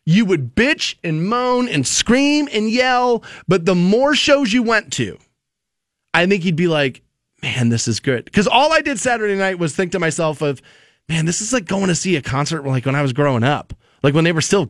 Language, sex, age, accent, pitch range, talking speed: English, male, 20-39, American, 170-255 Hz, 230 wpm